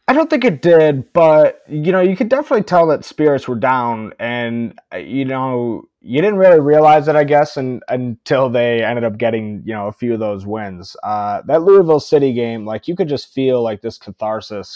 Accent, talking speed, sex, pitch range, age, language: American, 205 wpm, male, 110-140 Hz, 20-39, English